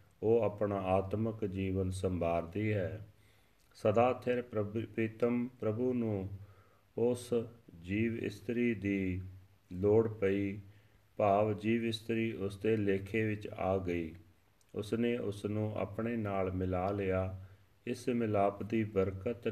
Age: 40-59